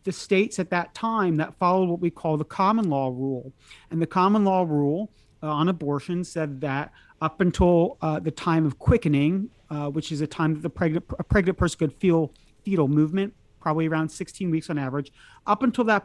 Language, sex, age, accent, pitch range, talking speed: English, male, 40-59, American, 155-190 Hz, 205 wpm